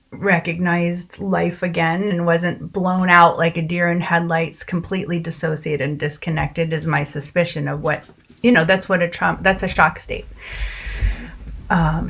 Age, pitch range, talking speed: 30-49, 165-195 Hz, 160 wpm